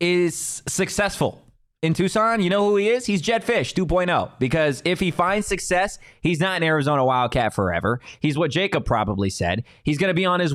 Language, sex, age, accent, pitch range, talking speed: English, male, 20-39, American, 125-170 Hz, 195 wpm